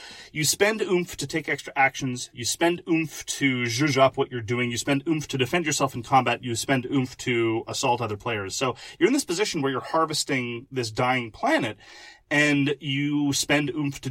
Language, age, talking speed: English, 30-49, 200 wpm